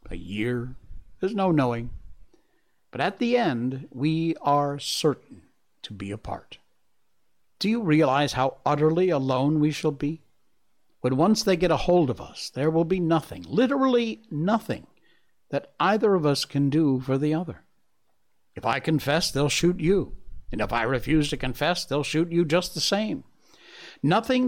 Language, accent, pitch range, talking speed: English, American, 130-185 Hz, 160 wpm